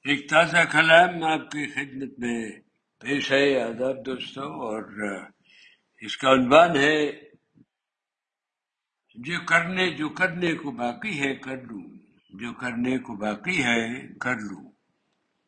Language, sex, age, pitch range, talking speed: Urdu, male, 60-79, 135-165 Hz, 120 wpm